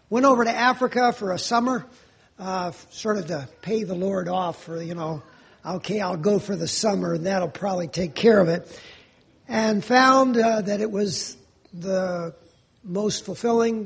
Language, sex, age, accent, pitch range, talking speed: English, male, 50-69, American, 175-225 Hz, 175 wpm